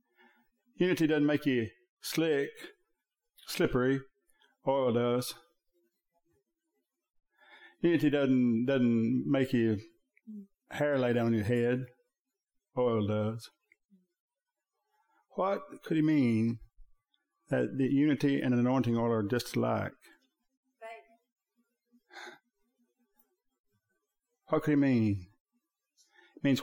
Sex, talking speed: male, 90 wpm